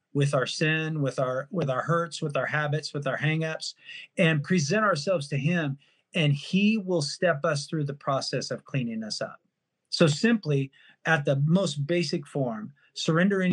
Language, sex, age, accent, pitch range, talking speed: English, male, 40-59, American, 140-170 Hz, 175 wpm